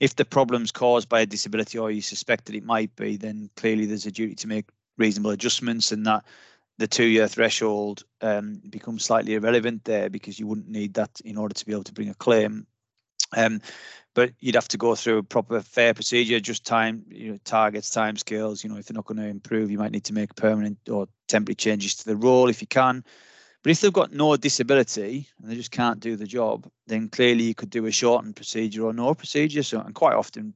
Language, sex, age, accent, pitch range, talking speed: English, male, 20-39, British, 105-115 Hz, 230 wpm